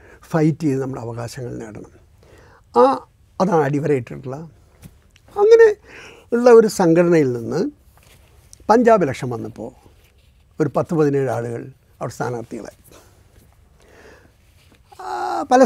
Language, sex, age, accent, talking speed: Malayalam, male, 60-79, native, 90 wpm